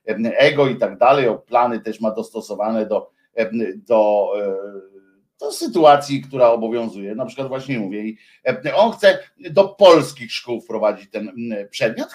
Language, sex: Polish, male